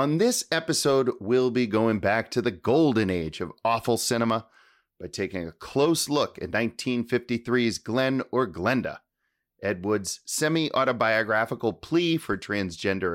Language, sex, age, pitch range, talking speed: English, male, 30-49, 95-125 Hz, 135 wpm